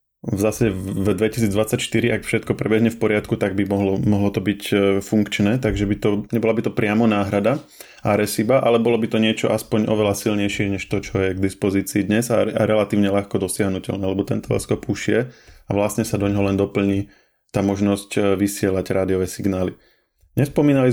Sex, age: male, 20-39